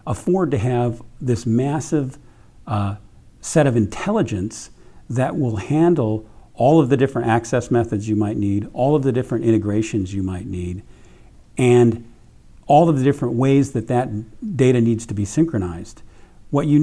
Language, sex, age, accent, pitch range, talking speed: English, male, 50-69, American, 110-140 Hz, 155 wpm